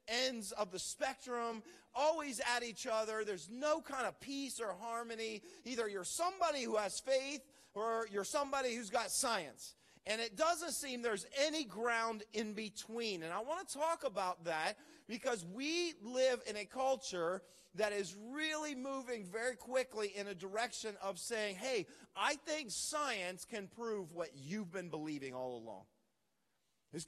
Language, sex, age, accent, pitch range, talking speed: English, male, 40-59, American, 185-260 Hz, 160 wpm